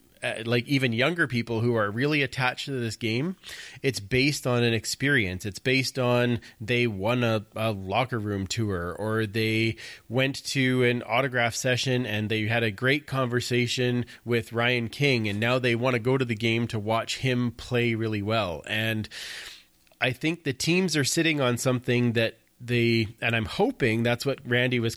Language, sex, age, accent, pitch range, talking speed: English, male, 30-49, American, 105-125 Hz, 185 wpm